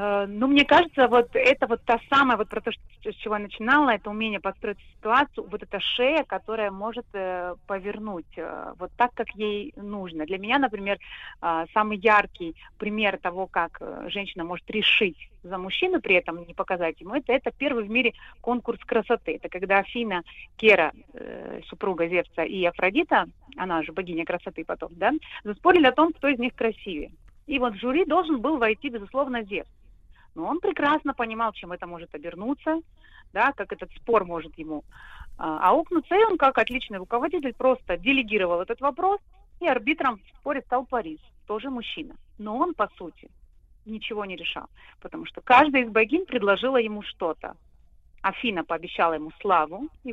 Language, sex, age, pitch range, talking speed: Russian, female, 30-49, 195-260 Hz, 165 wpm